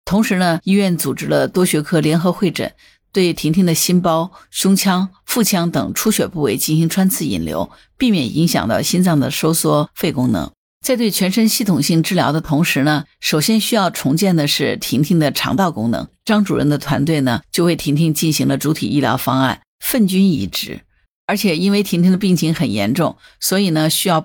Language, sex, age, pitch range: Chinese, female, 50-69, 150-190 Hz